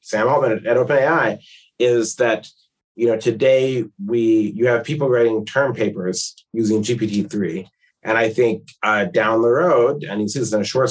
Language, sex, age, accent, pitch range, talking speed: English, male, 30-49, American, 105-125 Hz, 180 wpm